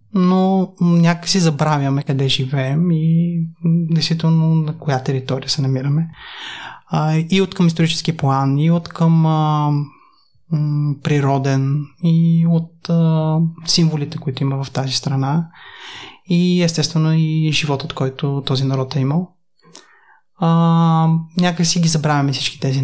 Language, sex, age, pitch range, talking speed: Bulgarian, male, 20-39, 140-165 Hz, 115 wpm